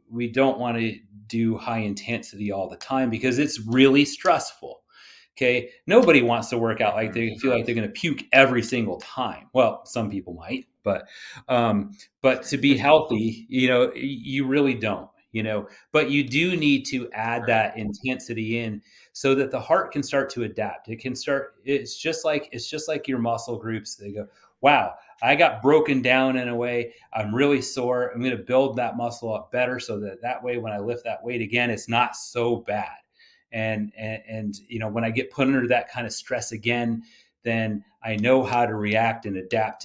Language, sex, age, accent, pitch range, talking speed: English, male, 30-49, American, 110-130 Hz, 205 wpm